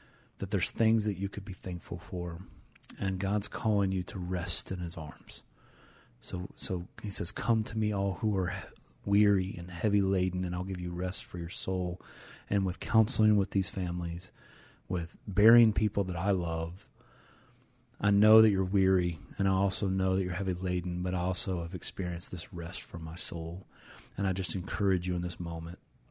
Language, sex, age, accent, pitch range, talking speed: English, male, 30-49, American, 90-105 Hz, 190 wpm